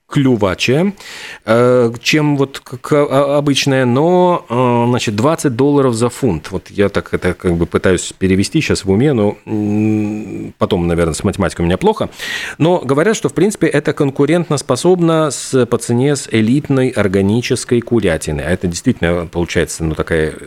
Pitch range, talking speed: 95-140 Hz, 145 wpm